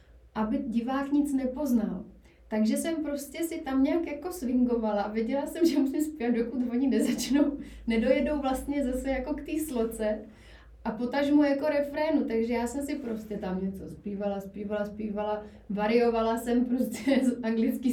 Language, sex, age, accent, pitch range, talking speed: Czech, female, 30-49, native, 220-260 Hz, 160 wpm